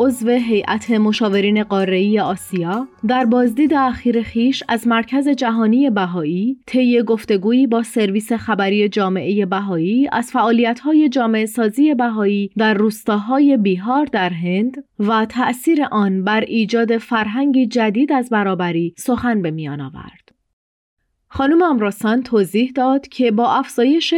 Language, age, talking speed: Persian, 30-49, 120 wpm